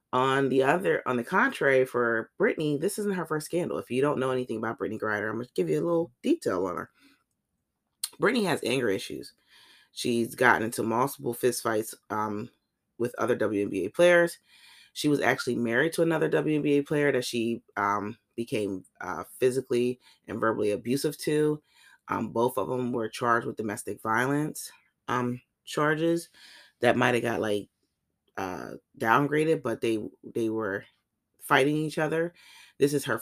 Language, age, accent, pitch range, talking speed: English, 30-49, American, 115-145 Hz, 165 wpm